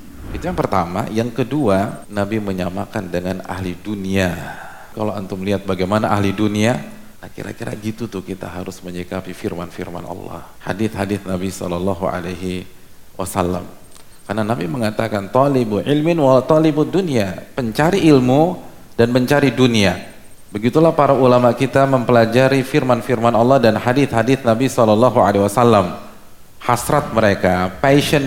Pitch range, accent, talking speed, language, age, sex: 95-125 Hz, native, 125 wpm, Indonesian, 40-59, male